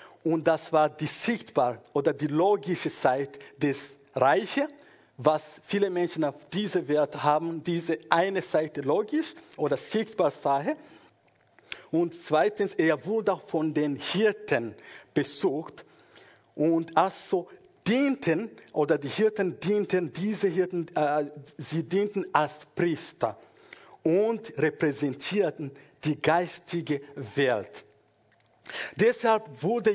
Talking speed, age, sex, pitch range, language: 110 wpm, 50-69, male, 150-195 Hz, German